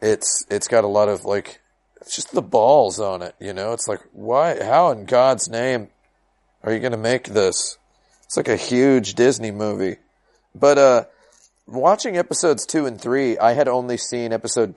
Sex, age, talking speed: male, 30-49, 185 wpm